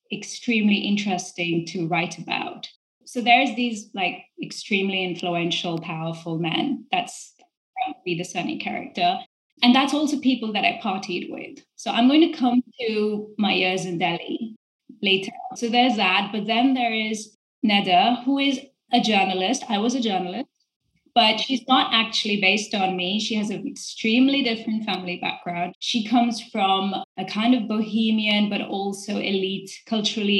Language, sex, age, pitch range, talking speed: English, female, 20-39, 190-235 Hz, 155 wpm